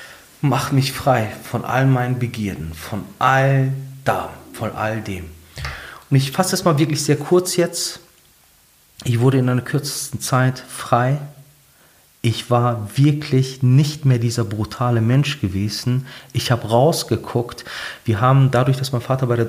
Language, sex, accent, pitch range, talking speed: German, male, German, 110-145 Hz, 150 wpm